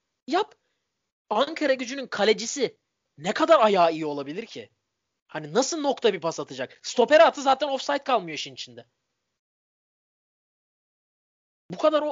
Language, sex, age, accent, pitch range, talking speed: Turkish, male, 30-49, native, 200-290 Hz, 125 wpm